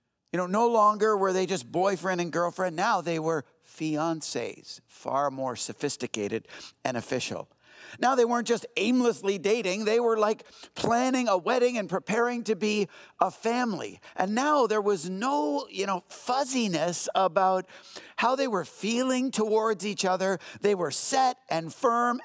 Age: 50-69